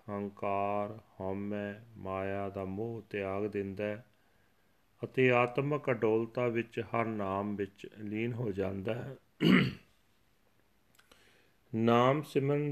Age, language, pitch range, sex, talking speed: 40-59, Punjabi, 100-115 Hz, male, 100 wpm